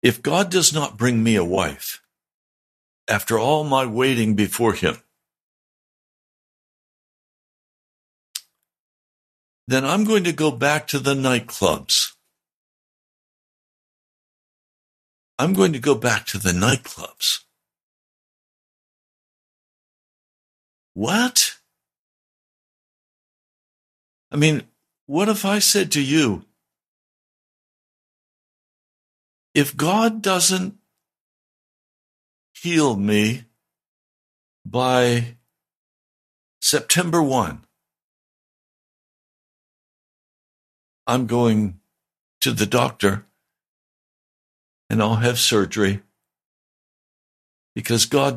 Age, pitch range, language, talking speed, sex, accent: 60-79, 115-155 Hz, English, 75 wpm, male, American